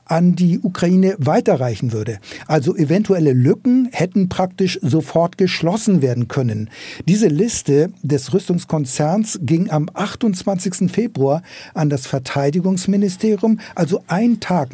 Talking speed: 115 wpm